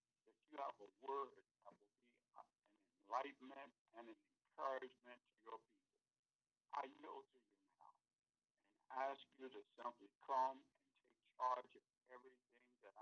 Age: 60-79